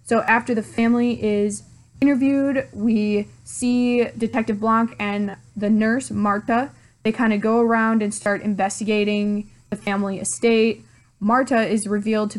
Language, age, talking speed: English, 20-39, 140 wpm